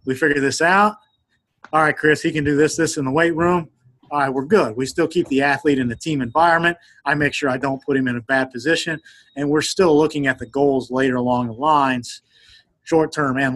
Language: English